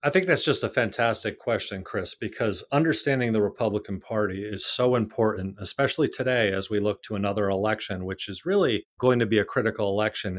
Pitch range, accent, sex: 100-125 Hz, American, male